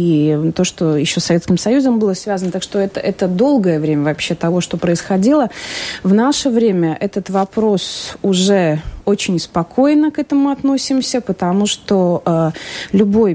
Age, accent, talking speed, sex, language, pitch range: 30-49, native, 155 wpm, female, Russian, 170-225 Hz